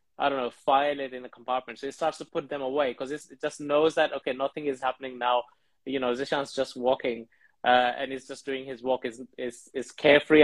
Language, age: English, 20-39